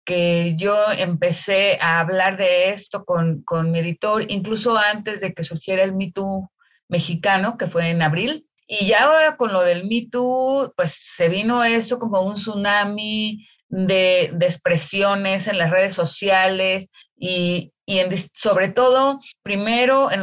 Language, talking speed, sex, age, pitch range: Spanish, 150 wpm, female, 30-49, 180-240 Hz